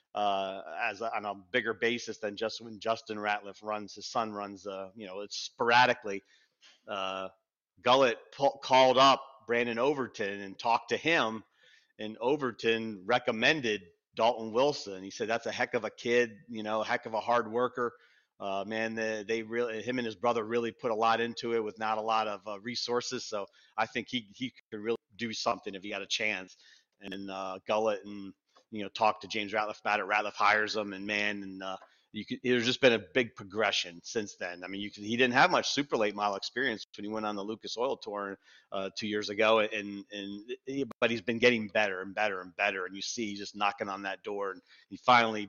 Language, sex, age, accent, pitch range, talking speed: English, male, 40-59, American, 100-115 Hz, 215 wpm